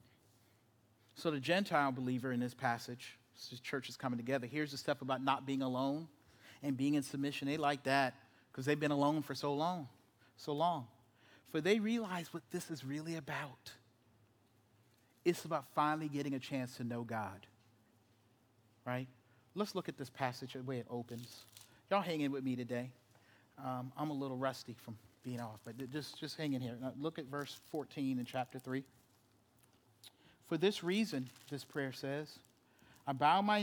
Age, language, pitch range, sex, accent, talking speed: 40-59, English, 125-165 Hz, male, American, 175 wpm